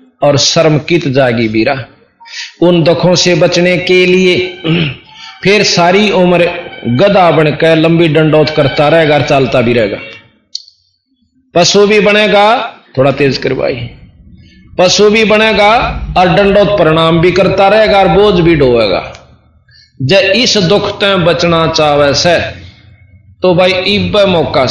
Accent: native